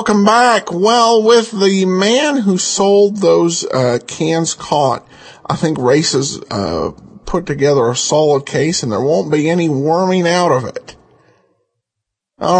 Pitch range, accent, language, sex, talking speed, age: 130-185 Hz, American, English, male, 150 wpm, 50-69